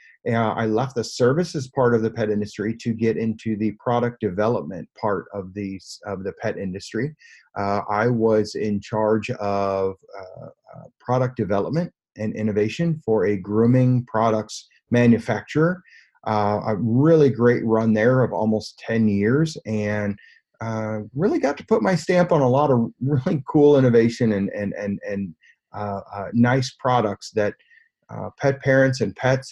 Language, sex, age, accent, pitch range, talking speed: English, male, 30-49, American, 105-125 Hz, 160 wpm